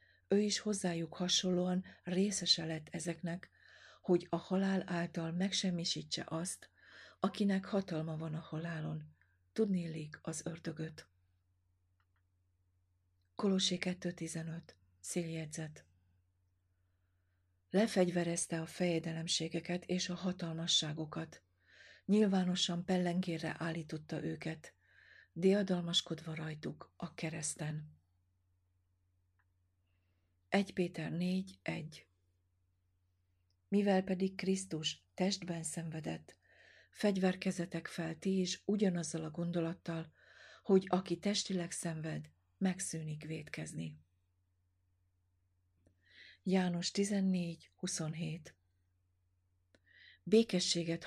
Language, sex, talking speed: Hungarian, female, 75 wpm